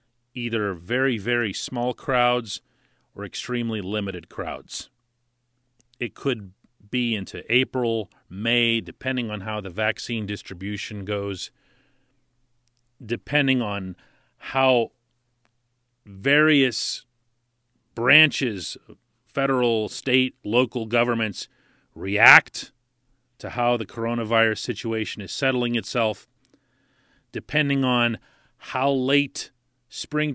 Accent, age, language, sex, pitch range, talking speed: American, 40-59, English, male, 110-130 Hz, 90 wpm